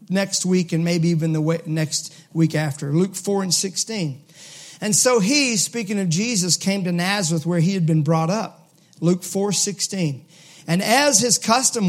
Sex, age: male, 40-59